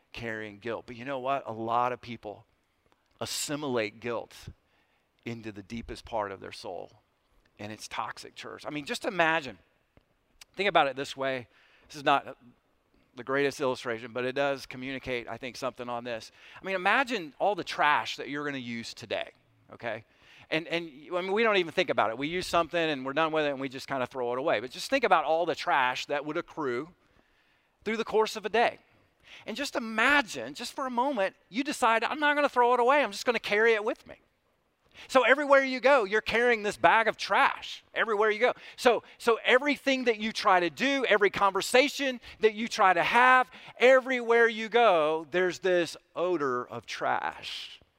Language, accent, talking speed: English, American, 205 wpm